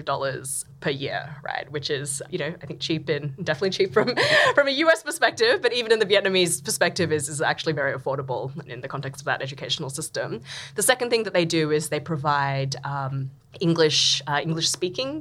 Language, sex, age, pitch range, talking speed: English, female, 20-39, 145-175 Hz, 200 wpm